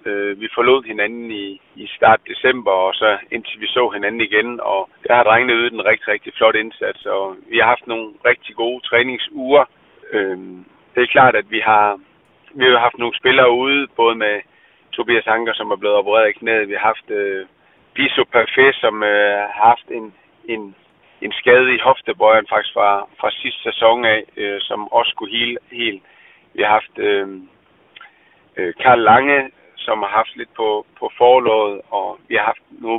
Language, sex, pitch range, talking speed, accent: Danish, male, 105-130 Hz, 185 wpm, native